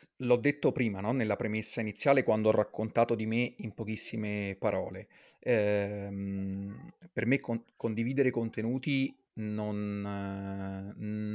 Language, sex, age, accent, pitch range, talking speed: Italian, male, 30-49, native, 110-135 Hz, 120 wpm